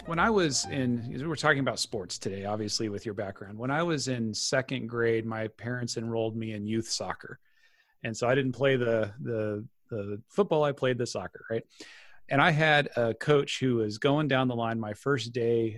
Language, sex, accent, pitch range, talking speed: English, male, American, 110-135 Hz, 205 wpm